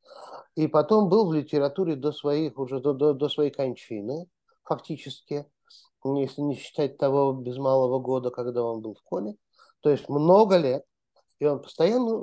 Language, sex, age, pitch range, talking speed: Russian, male, 50-69, 125-155 Hz, 160 wpm